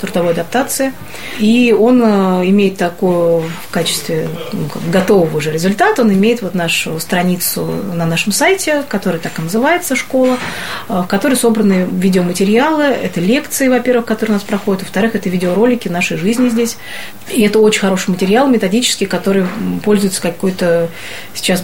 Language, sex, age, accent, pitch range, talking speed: Russian, female, 30-49, native, 175-220 Hz, 145 wpm